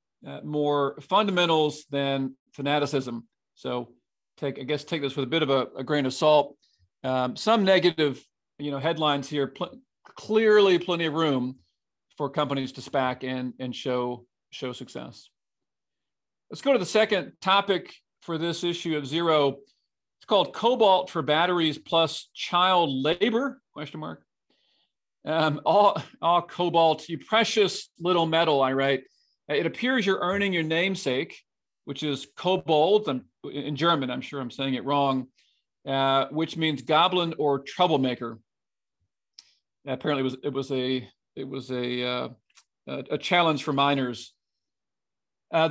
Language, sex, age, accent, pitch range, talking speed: English, male, 40-59, American, 135-175 Hz, 145 wpm